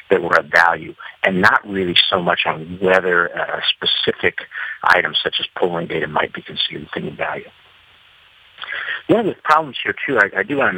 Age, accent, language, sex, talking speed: 60-79, American, English, male, 190 wpm